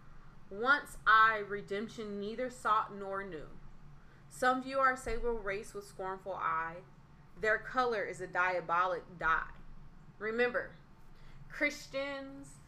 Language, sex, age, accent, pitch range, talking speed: English, female, 20-39, American, 160-210 Hz, 110 wpm